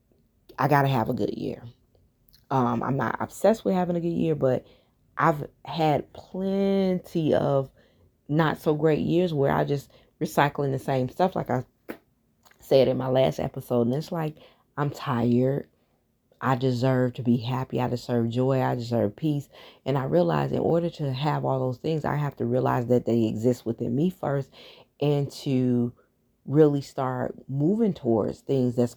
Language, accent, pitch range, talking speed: English, American, 125-165 Hz, 170 wpm